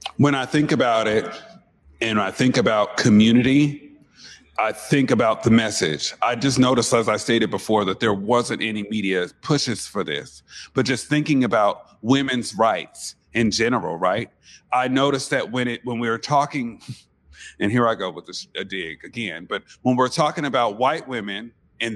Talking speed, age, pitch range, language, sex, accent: 180 wpm, 40-59, 115-150 Hz, English, male, American